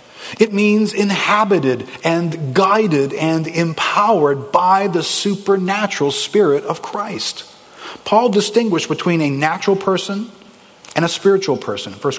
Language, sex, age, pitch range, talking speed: English, male, 40-59, 175-245 Hz, 120 wpm